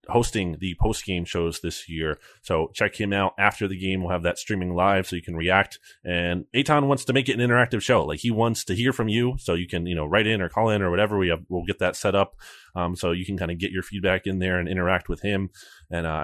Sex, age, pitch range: male, 30-49, 90-110 Hz